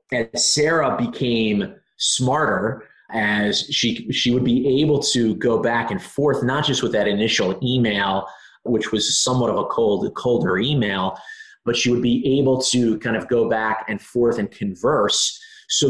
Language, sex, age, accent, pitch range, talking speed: English, male, 30-49, American, 100-125 Hz, 165 wpm